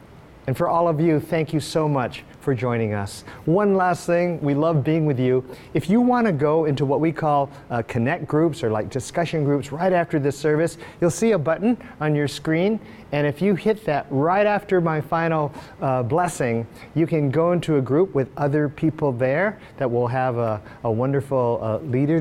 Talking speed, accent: 205 wpm, American